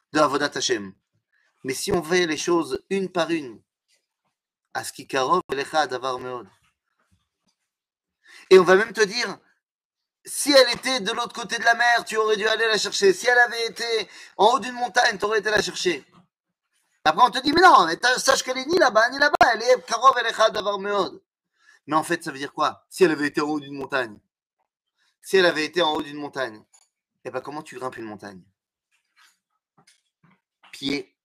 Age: 30-49